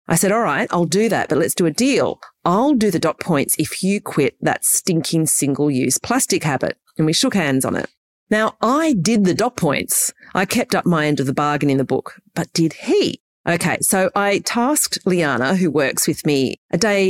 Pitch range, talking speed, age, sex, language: 155-230 Hz, 220 wpm, 40-59, female, English